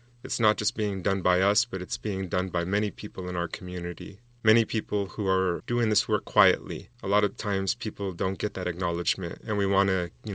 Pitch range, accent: 90-110 Hz, American